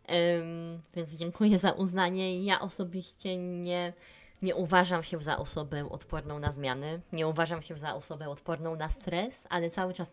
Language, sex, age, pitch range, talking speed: Polish, female, 20-39, 150-175 Hz, 155 wpm